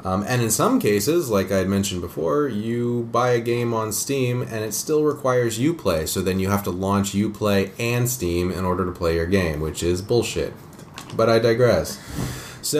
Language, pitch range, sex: English, 85-110 Hz, male